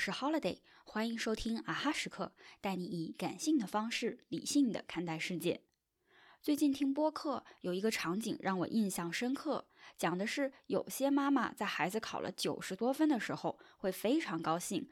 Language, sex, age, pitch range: Chinese, female, 20-39, 185-275 Hz